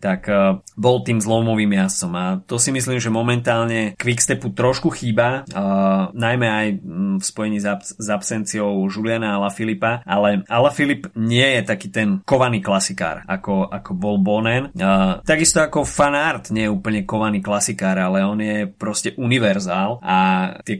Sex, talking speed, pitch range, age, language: male, 155 wpm, 100-125 Hz, 30-49, Slovak